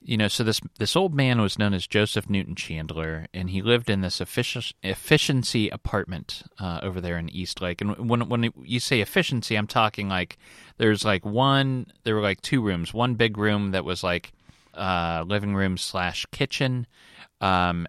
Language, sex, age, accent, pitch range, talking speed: English, male, 30-49, American, 90-110 Hz, 190 wpm